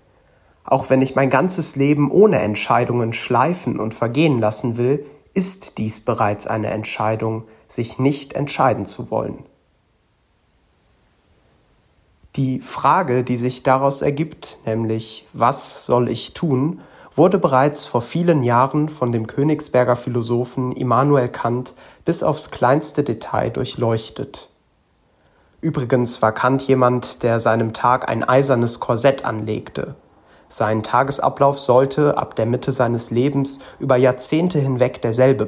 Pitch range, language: 110-140 Hz, German